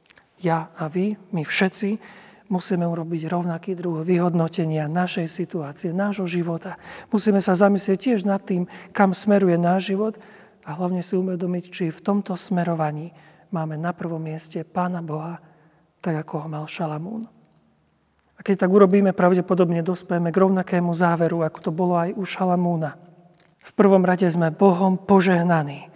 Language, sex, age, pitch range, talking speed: Slovak, male, 40-59, 170-195 Hz, 150 wpm